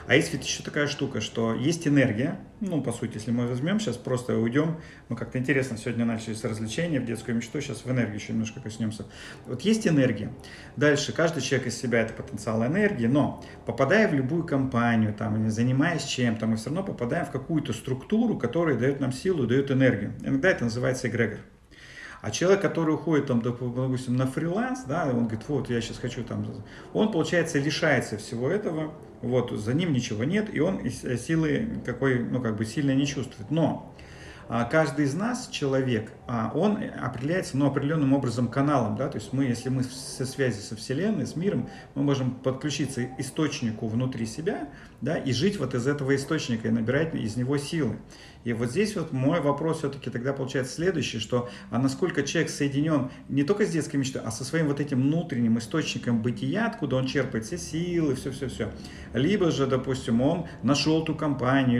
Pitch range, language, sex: 120-150 Hz, Russian, male